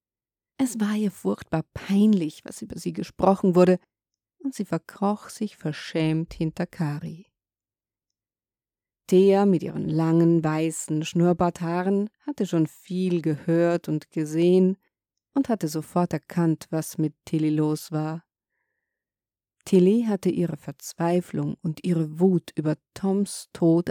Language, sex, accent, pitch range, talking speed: German, female, German, 155-195 Hz, 120 wpm